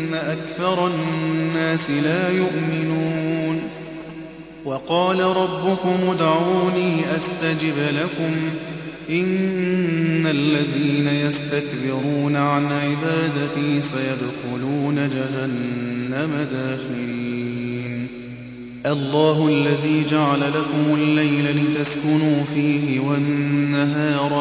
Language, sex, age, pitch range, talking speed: Arabic, male, 30-49, 140-160 Hz, 60 wpm